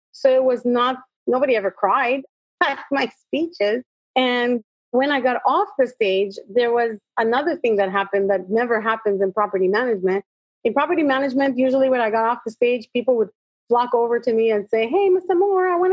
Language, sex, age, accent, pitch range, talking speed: English, female, 30-49, American, 225-300 Hz, 195 wpm